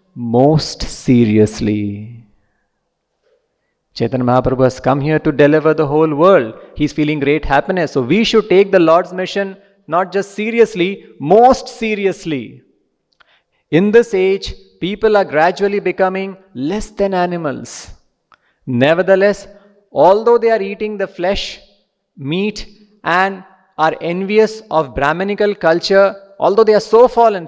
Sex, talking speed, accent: male, 125 wpm, Indian